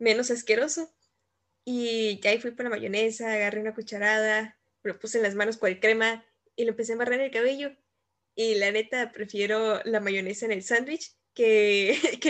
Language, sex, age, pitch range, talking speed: English, female, 10-29, 215-280 Hz, 190 wpm